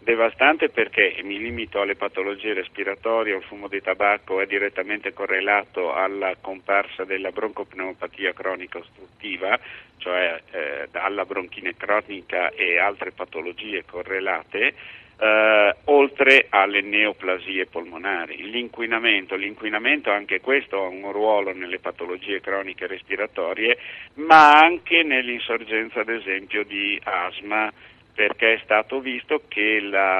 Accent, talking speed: native, 115 wpm